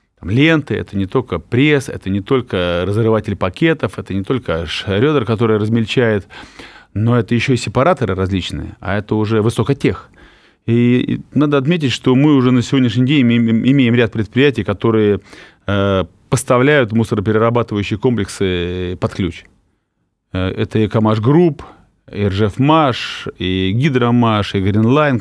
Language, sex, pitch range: Russian, male, 100-125 Hz